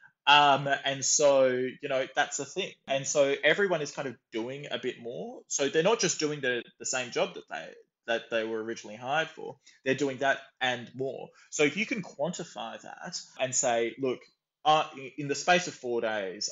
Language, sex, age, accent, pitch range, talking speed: English, male, 20-39, Australian, 115-145 Hz, 205 wpm